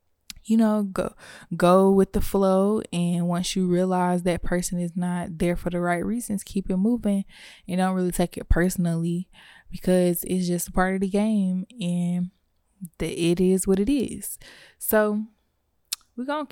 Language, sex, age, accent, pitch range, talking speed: English, female, 20-39, American, 175-200 Hz, 170 wpm